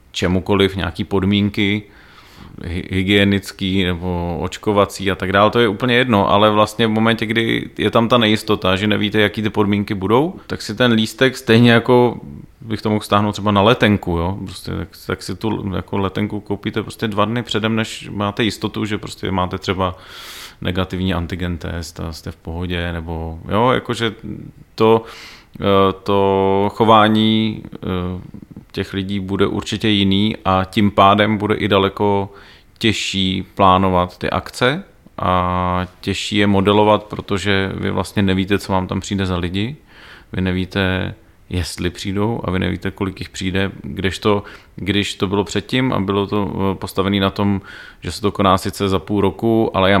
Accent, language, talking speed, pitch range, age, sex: native, Czech, 160 wpm, 95-105 Hz, 30-49, male